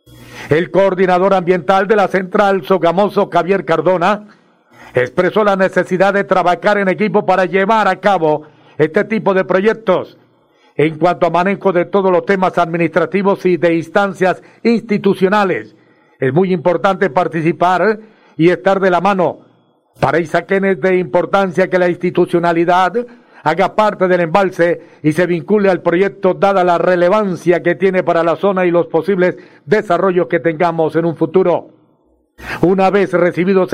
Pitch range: 175-195 Hz